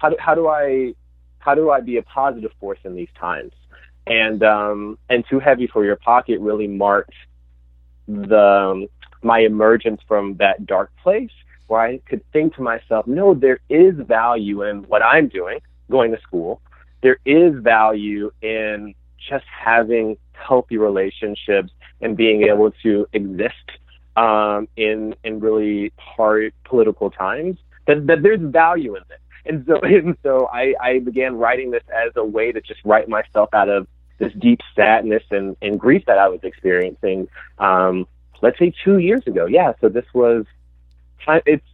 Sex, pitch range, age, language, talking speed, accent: male, 100-125 Hz, 30-49, English, 165 wpm, American